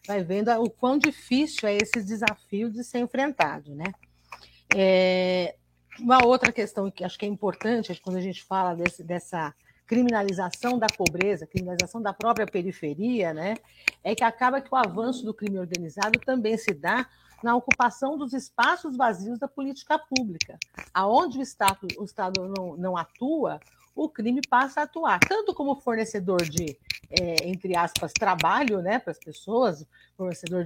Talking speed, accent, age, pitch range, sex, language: 155 wpm, Brazilian, 50-69, 180-245 Hz, female, English